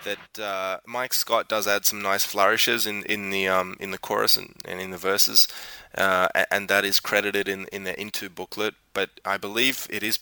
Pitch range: 95-120 Hz